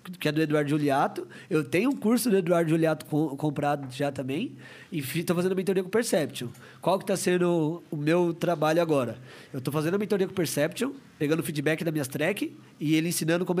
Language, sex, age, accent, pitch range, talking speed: Portuguese, male, 20-39, Brazilian, 150-190 Hz, 220 wpm